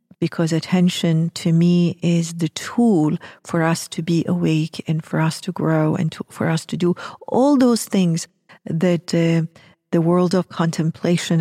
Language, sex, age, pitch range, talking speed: English, female, 50-69, 160-180 Hz, 165 wpm